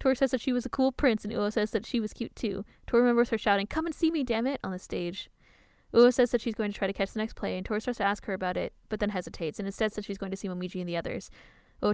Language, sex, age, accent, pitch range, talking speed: English, female, 10-29, American, 195-245 Hz, 320 wpm